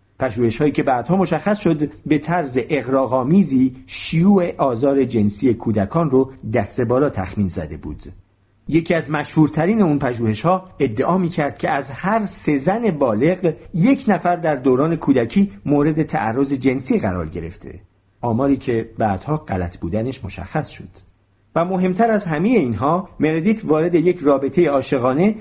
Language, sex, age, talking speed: Persian, male, 50-69, 140 wpm